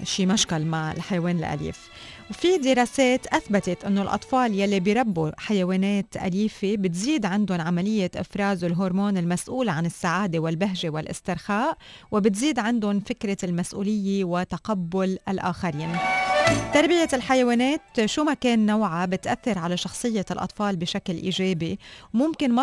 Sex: female